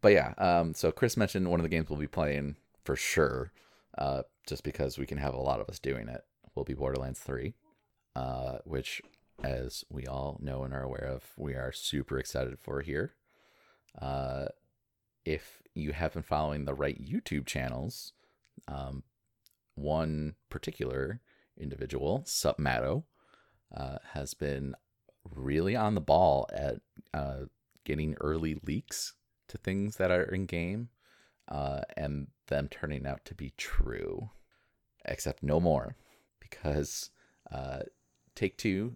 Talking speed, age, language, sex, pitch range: 145 wpm, 30-49, English, male, 70-85 Hz